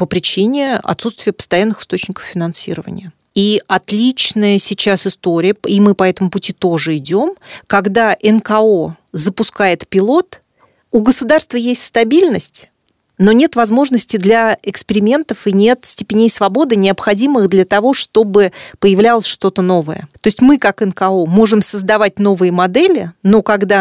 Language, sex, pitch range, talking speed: Russian, female, 180-225 Hz, 130 wpm